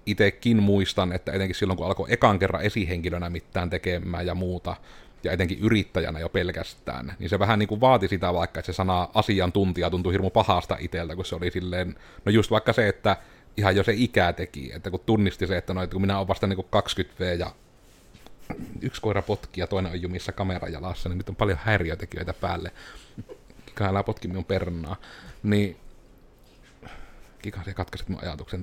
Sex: male